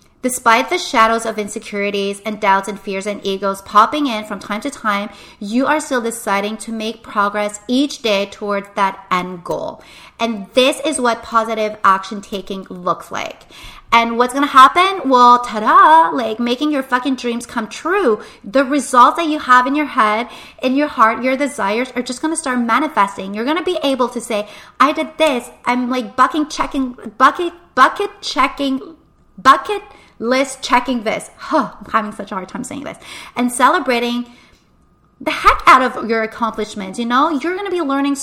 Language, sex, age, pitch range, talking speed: English, female, 30-49, 220-280 Hz, 185 wpm